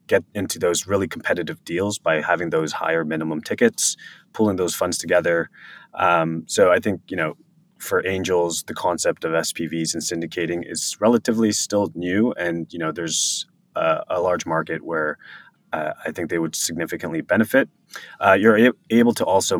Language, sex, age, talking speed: English, male, 20-39, 170 wpm